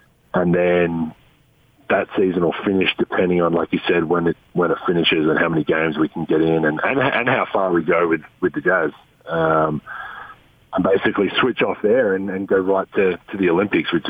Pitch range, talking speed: 85-115 Hz, 215 wpm